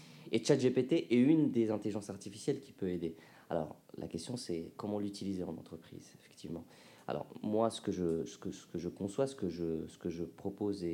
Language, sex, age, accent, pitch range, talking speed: French, male, 30-49, French, 90-115 Hz, 205 wpm